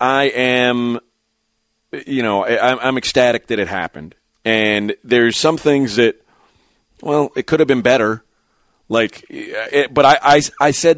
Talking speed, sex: 155 wpm, male